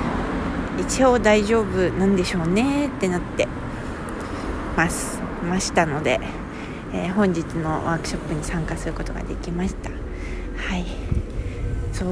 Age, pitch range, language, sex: 20-39, 160-220 Hz, Japanese, female